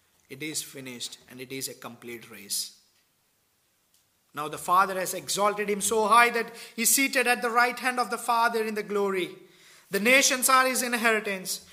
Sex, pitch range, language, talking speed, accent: male, 150-225 Hz, English, 185 wpm, Indian